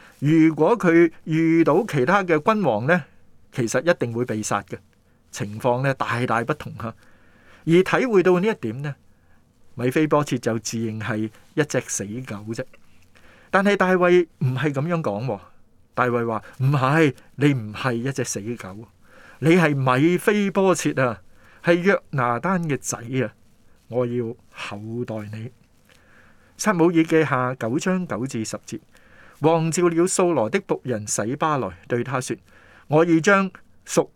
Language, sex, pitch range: Chinese, male, 110-160 Hz